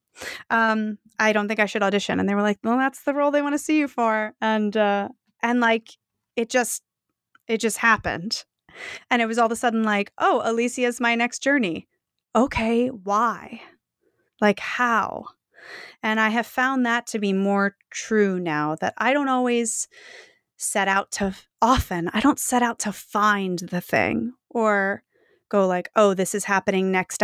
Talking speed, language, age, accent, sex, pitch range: 180 wpm, English, 30-49, American, female, 195-245 Hz